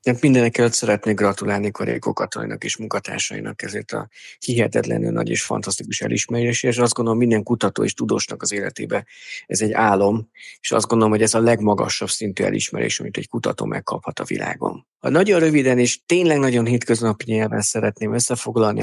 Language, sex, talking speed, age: Hungarian, male, 165 wpm, 50-69